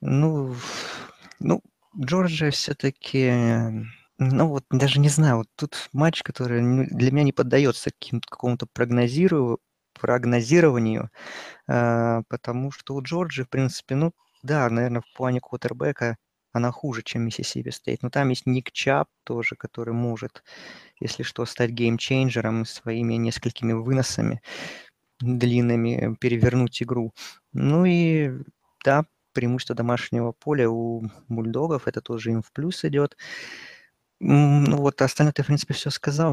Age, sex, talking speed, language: 20-39, male, 130 wpm, Russian